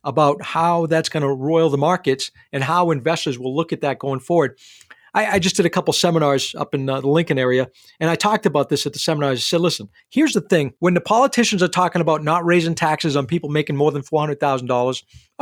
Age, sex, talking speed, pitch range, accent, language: 40-59, male, 230 wpm, 145-190 Hz, American, English